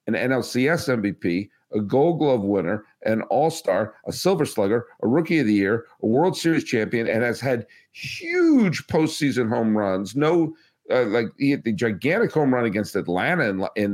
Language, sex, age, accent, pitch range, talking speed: English, male, 50-69, American, 110-150 Hz, 180 wpm